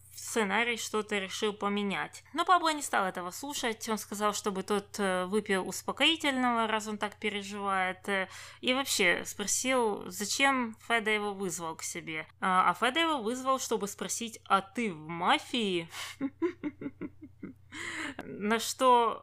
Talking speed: 130 wpm